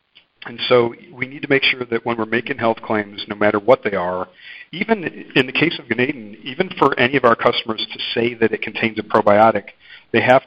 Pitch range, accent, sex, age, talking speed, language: 105-120 Hz, American, male, 50-69, 225 wpm, English